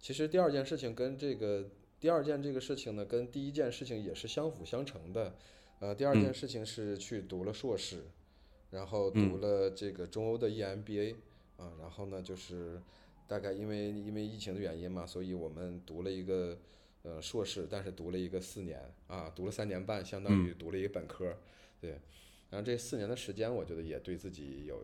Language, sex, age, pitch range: Chinese, male, 20-39, 90-115 Hz